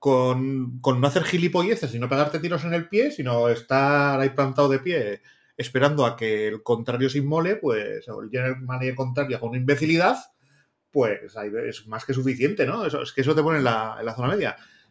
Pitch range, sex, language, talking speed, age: 120-150 Hz, male, Spanish, 210 wpm, 30-49